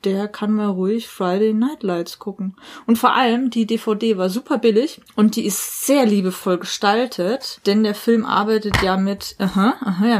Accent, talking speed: German, 180 wpm